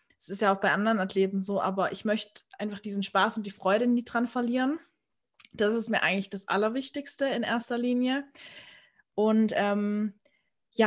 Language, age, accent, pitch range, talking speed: German, 20-39, German, 195-235 Hz, 175 wpm